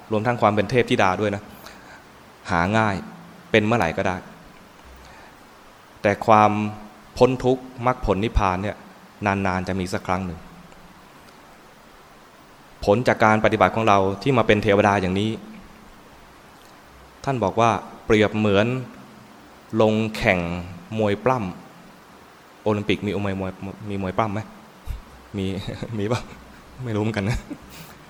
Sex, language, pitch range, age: male, English, 95-110 Hz, 20-39